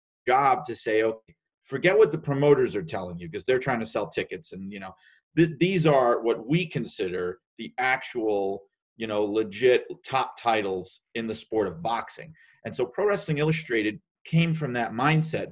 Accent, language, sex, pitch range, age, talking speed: American, English, male, 110-150 Hz, 30-49, 180 wpm